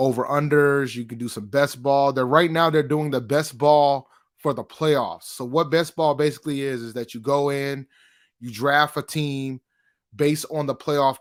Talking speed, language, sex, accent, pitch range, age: 205 wpm, English, male, American, 125-150 Hz, 30-49